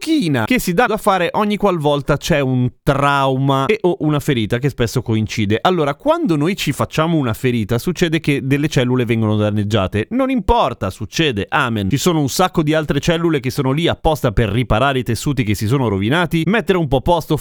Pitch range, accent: 120-170 Hz, native